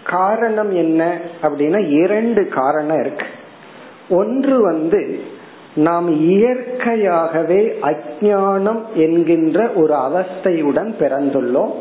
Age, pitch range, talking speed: 50-69, 150-205 Hz, 75 wpm